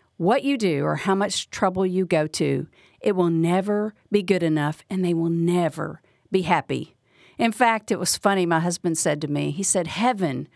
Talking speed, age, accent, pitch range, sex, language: 200 wpm, 50-69, American, 160-230 Hz, female, English